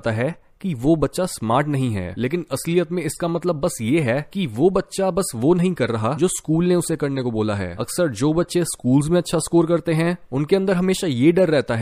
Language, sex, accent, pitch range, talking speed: Hindi, male, native, 130-175 Hz, 235 wpm